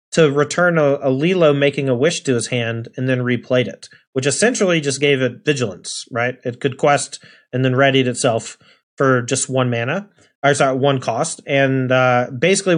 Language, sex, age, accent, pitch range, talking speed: English, male, 30-49, American, 125-155 Hz, 190 wpm